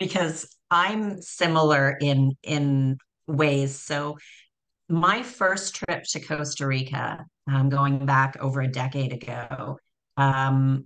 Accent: American